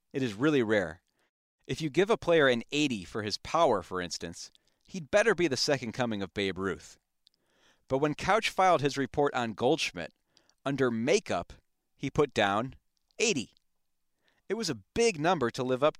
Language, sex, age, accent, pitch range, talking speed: English, male, 40-59, American, 105-140 Hz, 175 wpm